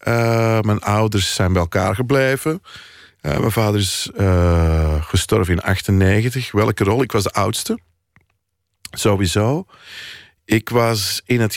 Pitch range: 90-110 Hz